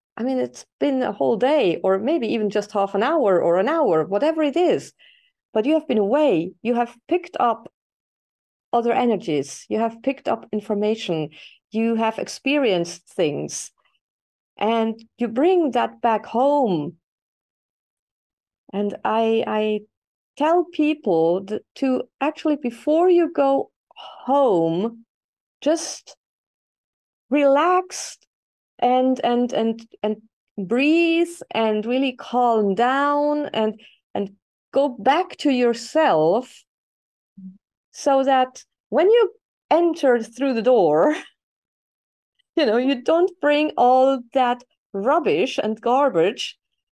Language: English